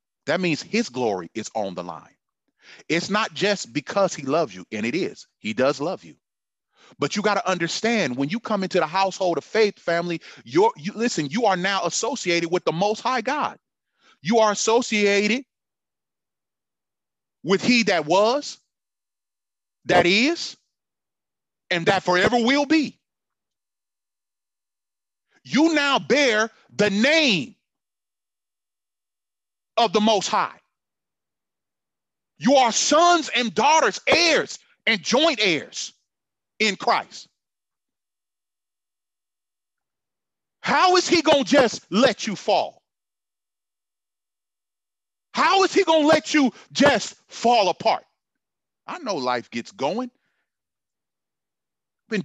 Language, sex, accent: English, male, American